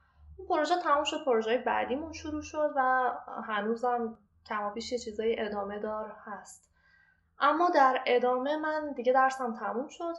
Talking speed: 140 wpm